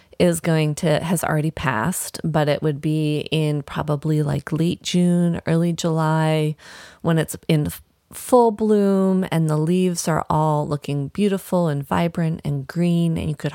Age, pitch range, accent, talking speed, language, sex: 30-49, 155-175 Hz, American, 160 wpm, English, female